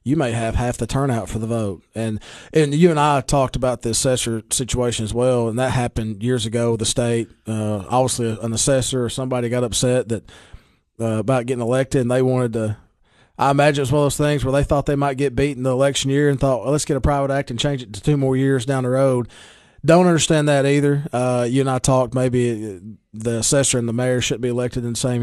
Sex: male